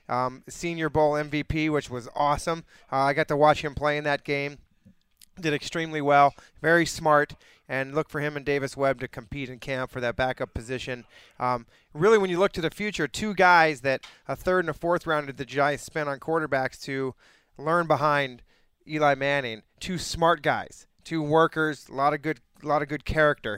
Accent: American